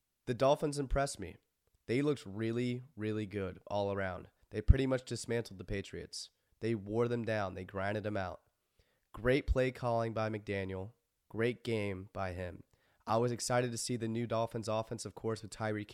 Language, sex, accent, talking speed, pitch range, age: English, male, American, 175 wpm, 100-120 Hz, 30-49